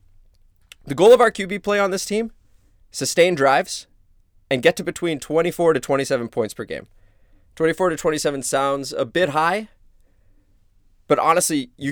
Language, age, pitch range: English, 20-39, 105-140 Hz